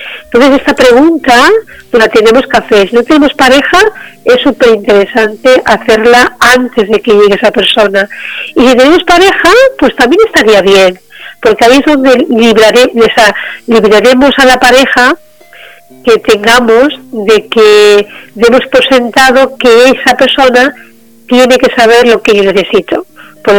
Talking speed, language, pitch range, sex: 135 wpm, Spanish, 205-255 Hz, female